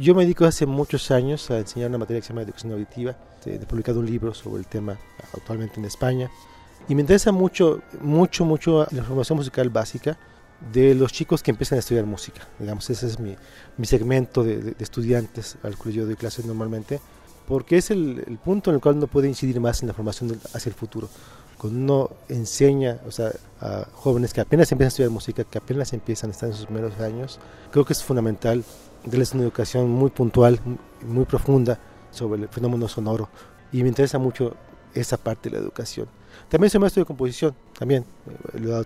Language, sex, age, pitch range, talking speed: Spanish, male, 40-59, 110-135 Hz, 205 wpm